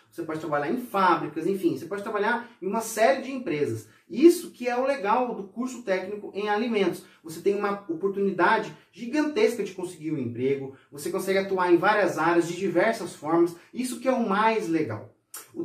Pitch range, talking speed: 165-225 Hz, 190 wpm